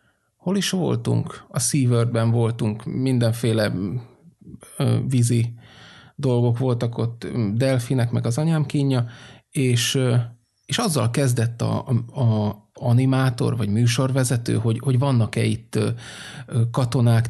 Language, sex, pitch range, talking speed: Hungarian, male, 120-140 Hz, 105 wpm